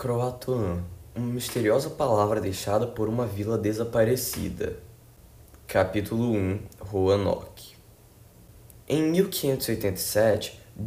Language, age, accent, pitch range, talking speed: Portuguese, 10-29, Brazilian, 105-130 Hz, 75 wpm